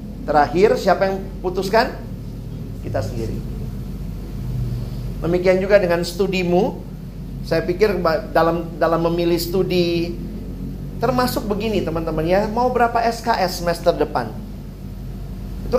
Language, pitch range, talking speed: Indonesian, 165-200 Hz, 100 wpm